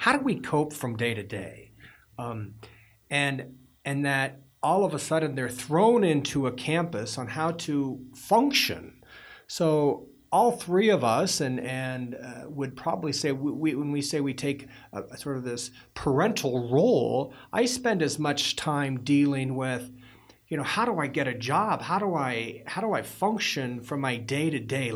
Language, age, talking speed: English, 40-59, 185 wpm